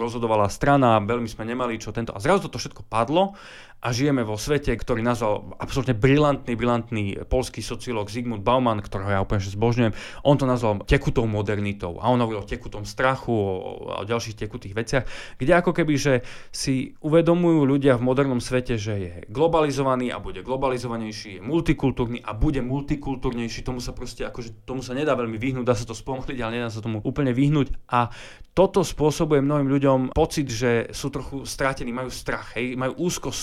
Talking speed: 180 wpm